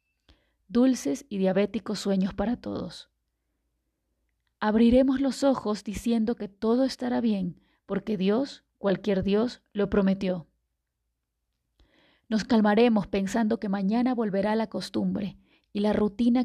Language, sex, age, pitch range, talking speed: Spanish, female, 30-49, 195-235 Hz, 115 wpm